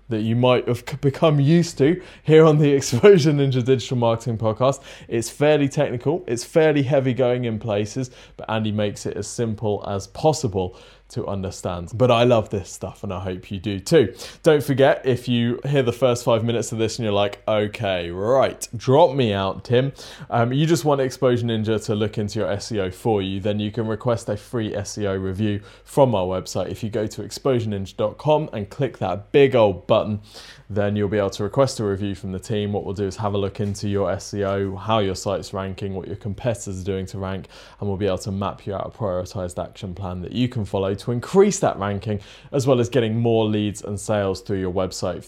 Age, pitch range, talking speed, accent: 20-39, 100-125 Hz, 215 wpm, British